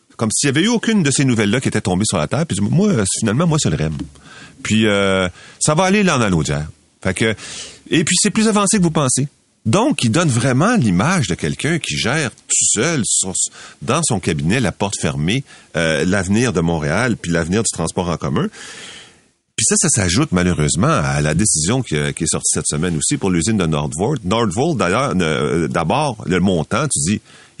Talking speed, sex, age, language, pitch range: 210 wpm, male, 40-59, French, 85-130 Hz